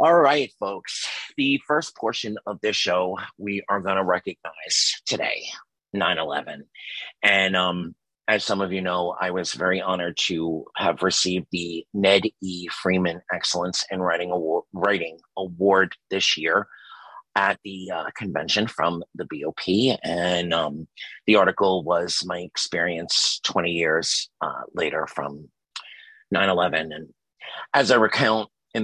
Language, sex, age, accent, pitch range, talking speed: English, male, 30-49, American, 90-100 Hz, 135 wpm